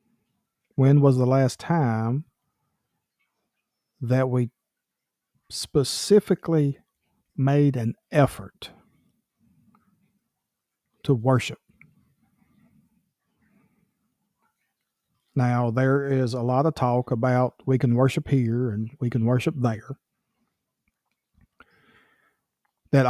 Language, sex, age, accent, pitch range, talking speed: English, male, 50-69, American, 120-140 Hz, 80 wpm